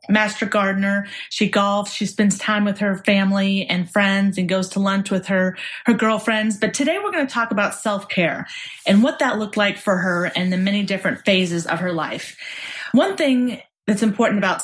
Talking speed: 195 wpm